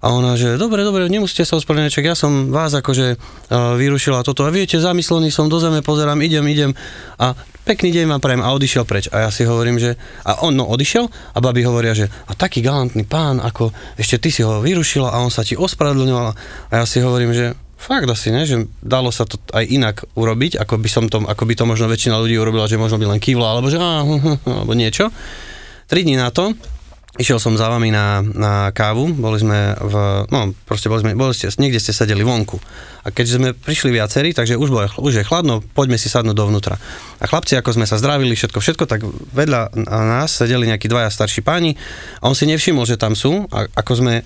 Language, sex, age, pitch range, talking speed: Slovak, male, 20-39, 110-145 Hz, 215 wpm